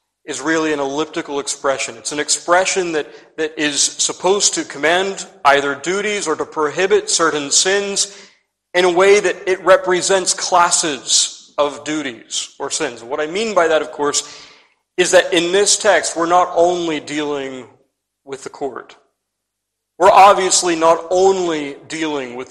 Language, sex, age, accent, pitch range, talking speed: English, male, 40-59, American, 140-175 Hz, 150 wpm